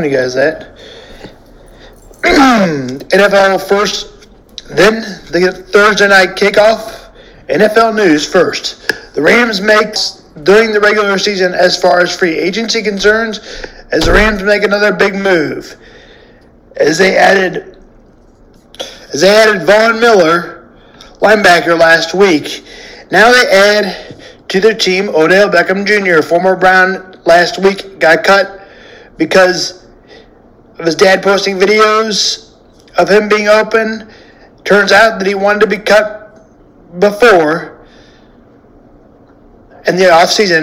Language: English